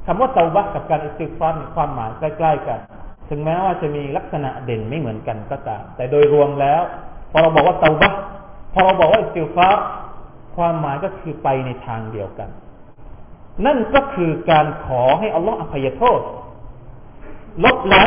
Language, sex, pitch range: Thai, male, 140-220 Hz